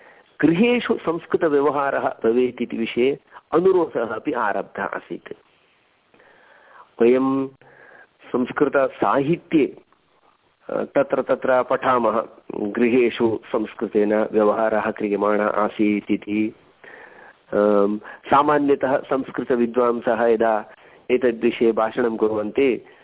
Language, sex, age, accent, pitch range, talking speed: Hindi, male, 50-69, native, 110-130 Hz, 55 wpm